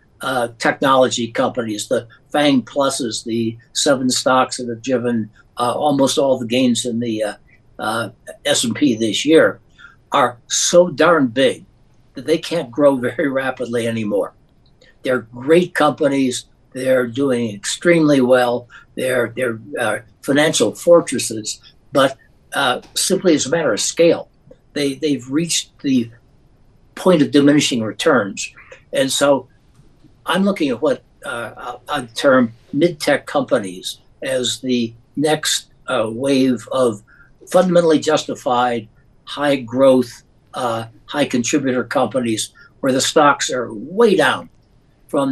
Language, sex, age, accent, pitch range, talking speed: English, male, 60-79, American, 120-145 Hz, 125 wpm